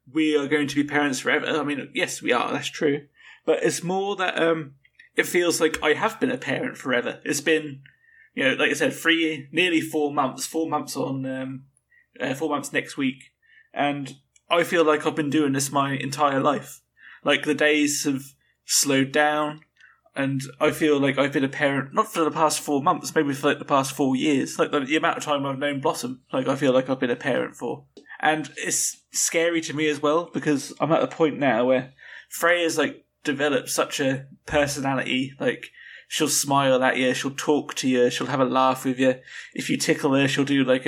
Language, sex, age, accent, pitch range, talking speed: English, male, 20-39, British, 135-155 Hz, 215 wpm